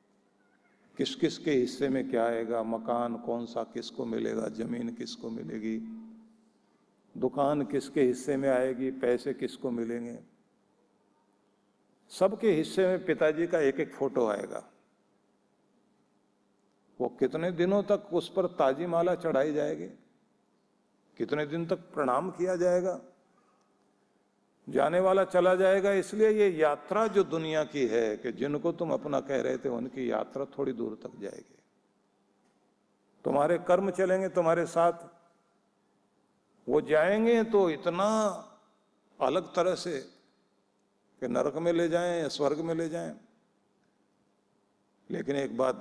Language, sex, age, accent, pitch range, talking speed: Hindi, male, 50-69, native, 125-185 Hz, 125 wpm